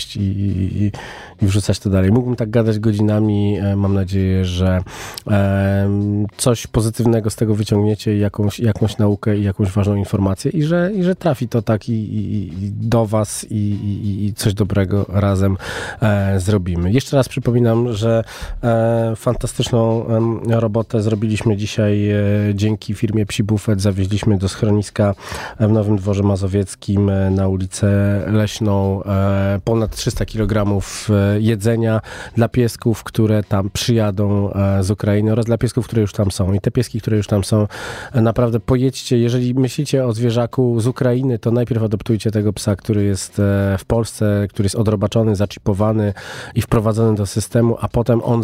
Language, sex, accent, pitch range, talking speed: Polish, male, native, 100-115 Hz, 145 wpm